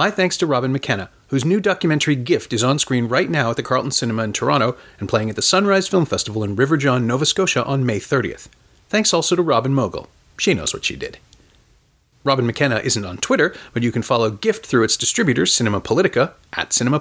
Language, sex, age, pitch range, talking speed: English, male, 40-59, 110-150 Hz, 220 wpm